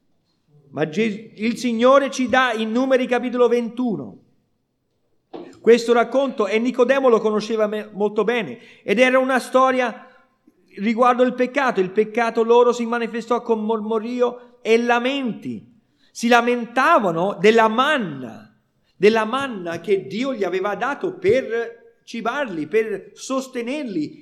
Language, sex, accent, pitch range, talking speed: Italian, male, native, 190-255 Hz, 125 wpm